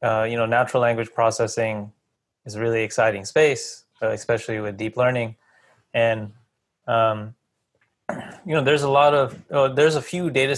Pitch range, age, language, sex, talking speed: 115-135 Hz, 20-39, English, male, 160 wpm